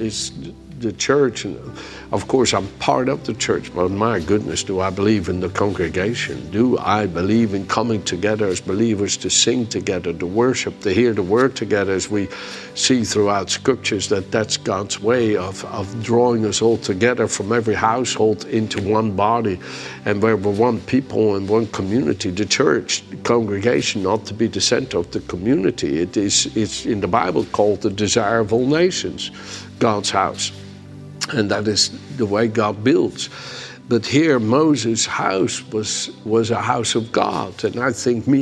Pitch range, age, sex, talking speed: 100-120 Hz, 60-79, male, 175 wpm